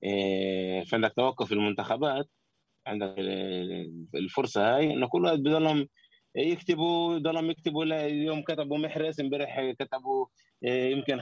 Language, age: Arabic, 20-39